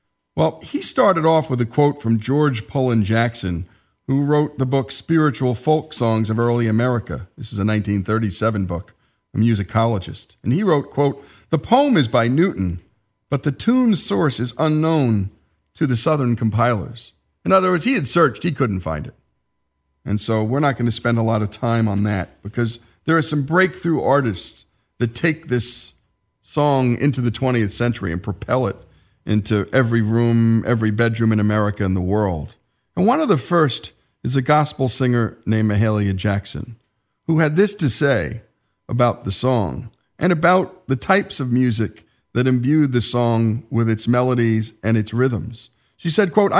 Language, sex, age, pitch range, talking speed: English, male, 40-59, 110-150 Hz, 175 wpm